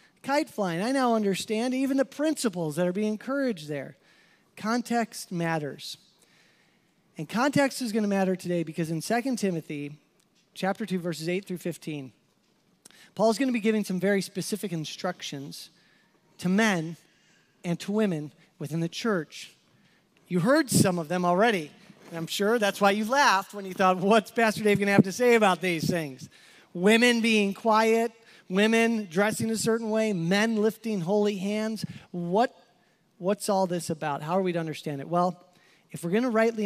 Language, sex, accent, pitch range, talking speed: English, male, American, 175-220 Hz, 165 wpm